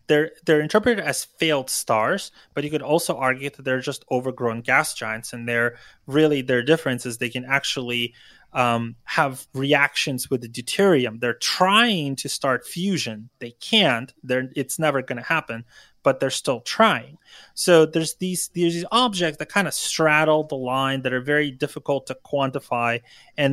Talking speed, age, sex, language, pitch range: 165 wpm, 30-49, male, English, 125-150 Hz